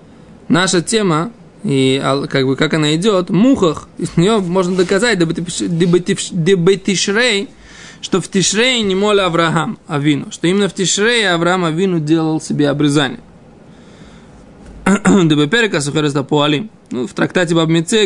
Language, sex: Russian, male